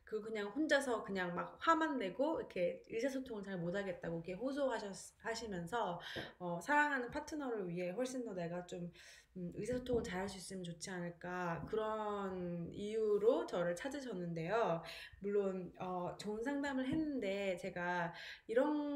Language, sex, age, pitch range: Korean, female, 20-39, 185-240 Hz